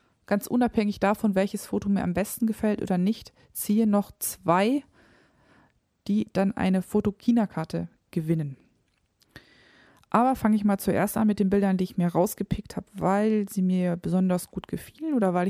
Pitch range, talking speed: 185-225 Hz, 160 wpm